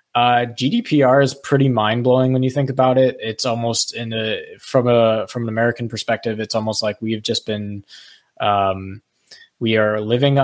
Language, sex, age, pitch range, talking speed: English, male, 20-39, 105-125 Hz, 180 wpm